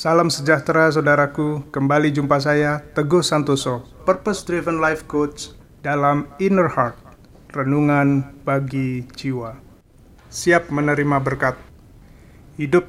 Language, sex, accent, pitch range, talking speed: Indonesian, male, native, 130-150 Hz, 100 wpm